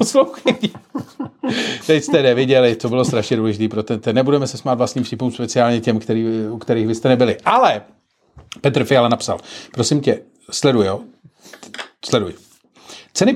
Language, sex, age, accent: Czech, male, 40-59, native